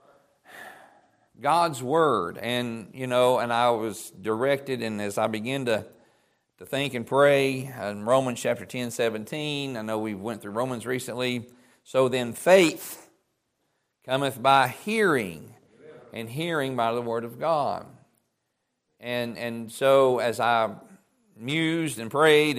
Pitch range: 115-145 Hz